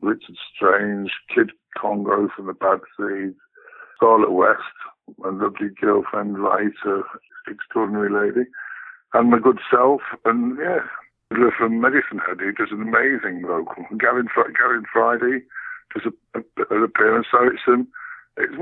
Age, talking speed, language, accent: 60-79, 140 wpm, English, British